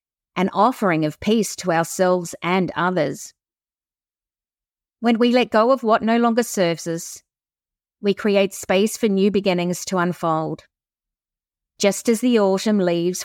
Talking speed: 140 wpm